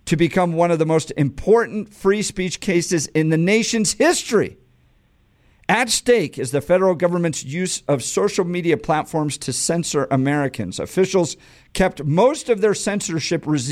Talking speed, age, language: 150 wpm, 50-69, English